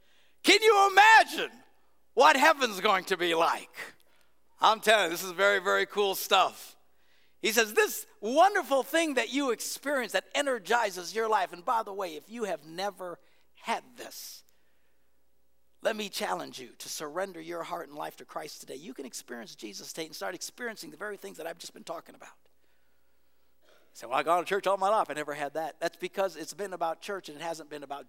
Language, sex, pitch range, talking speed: English, male, 160-255 Hz, 205 wpm